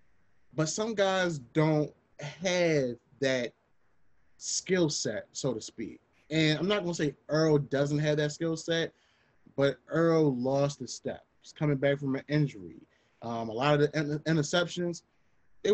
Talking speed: 155 wpm